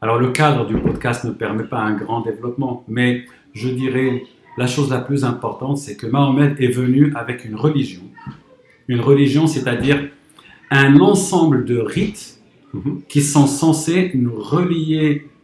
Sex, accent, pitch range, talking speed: male, French, 125-150 Hz, 150 wpm